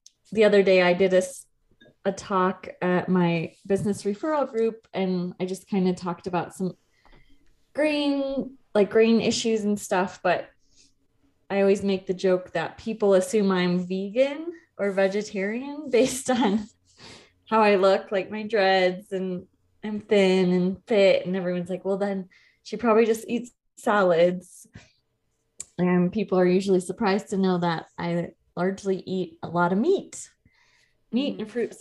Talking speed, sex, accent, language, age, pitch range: 155 wpm, female, American, English, 20-39, 185-220 Hz